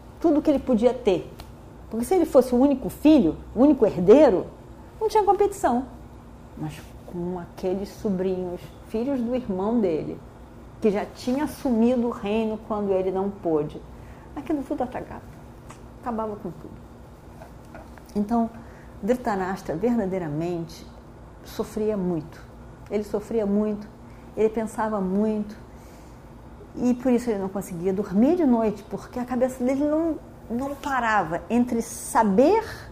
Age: 40-59